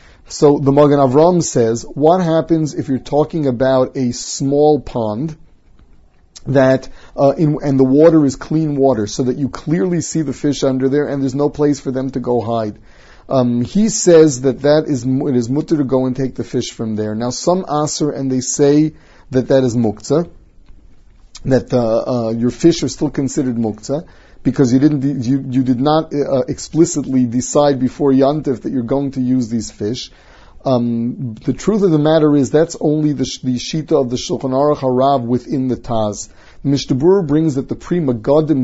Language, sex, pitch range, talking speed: English, male, 125-150 Hz, 195 wpm